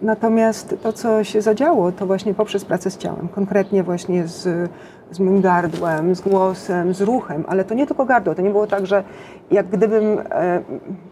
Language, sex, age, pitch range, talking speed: Polish, female, 40-59, 180-205 Hz, 185 wpm